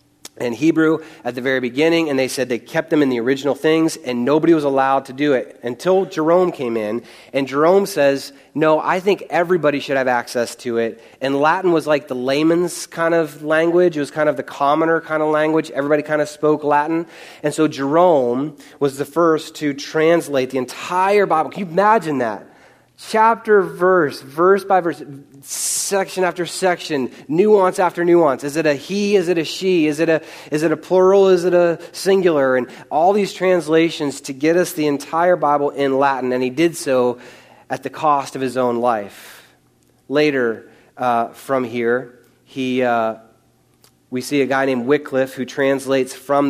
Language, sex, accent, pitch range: English, male, American, 130-160 Hz